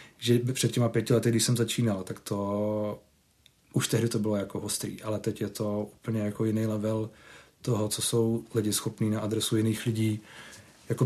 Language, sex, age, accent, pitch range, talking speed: Czech, male, 30-49, native, 110-120 Hz, 185 wpm